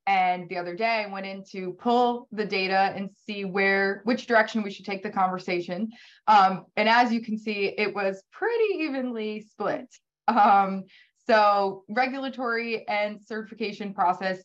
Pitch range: 175-220 Hz